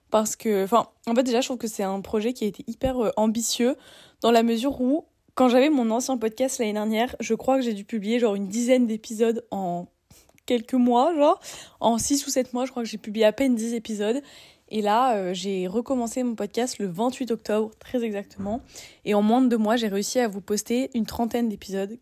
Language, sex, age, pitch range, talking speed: French, female, 20-39, 215-245 Hz, 225 wpm